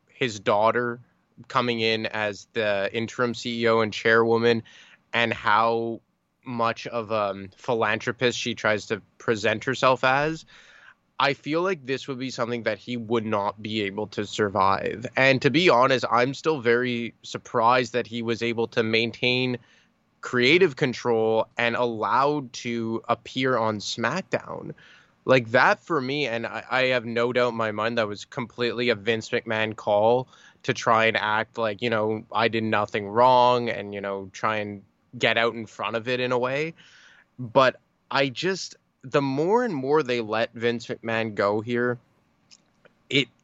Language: English